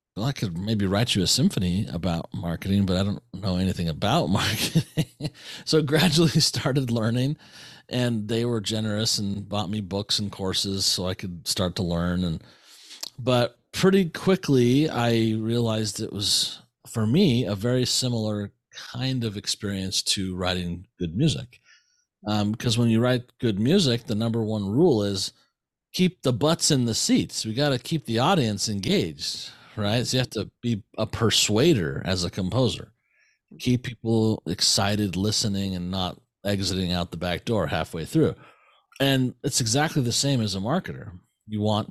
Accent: American